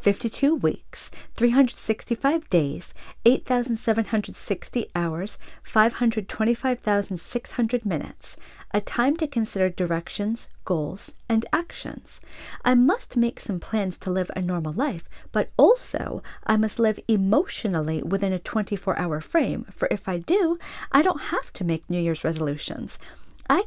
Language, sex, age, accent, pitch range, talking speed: English, female, 40-59, American, 185-260 Hz, 125 wpm